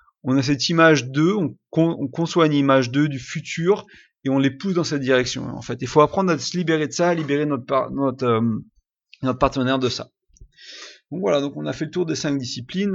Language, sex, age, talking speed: French, male, 30-49, 230 wpm